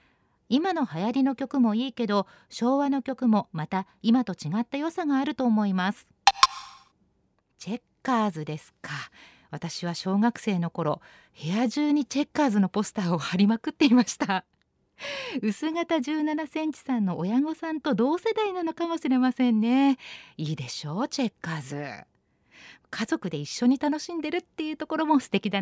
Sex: female